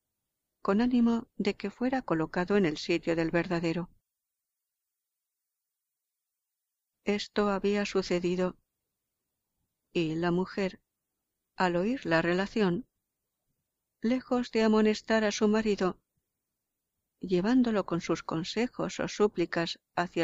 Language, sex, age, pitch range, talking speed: Spanish, female, 50-69, 175-205 Hz, 100 wpm